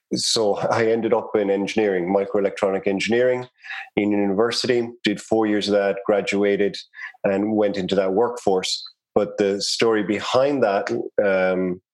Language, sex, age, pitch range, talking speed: English, male, 30-49, 95-105 Hz, 140 wpm